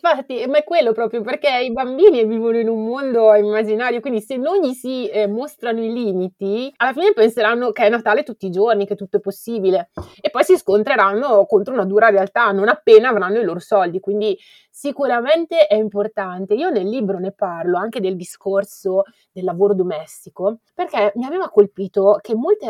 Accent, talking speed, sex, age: native, 185 wpm, female, 30-49